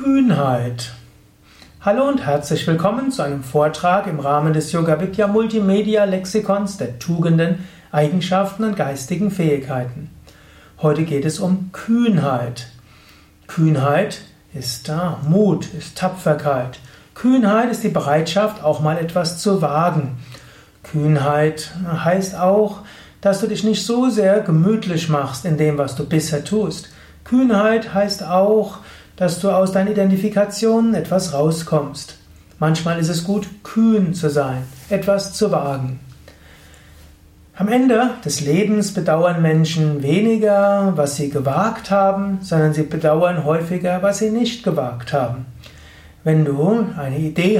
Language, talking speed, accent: German, 125 wpm, German